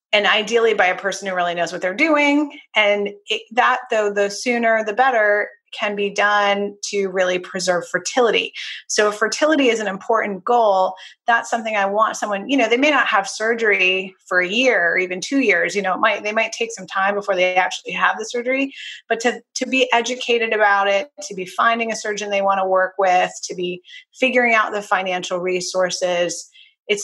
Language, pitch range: English, 190-235 Hz